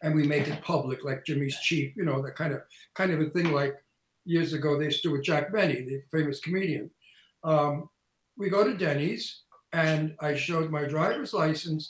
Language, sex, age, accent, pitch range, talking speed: English, male, 60-79, American, 155-210 Hz, 205 wpm